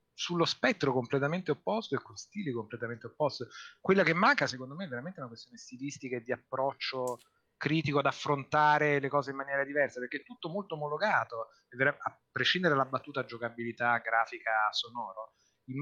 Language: Italian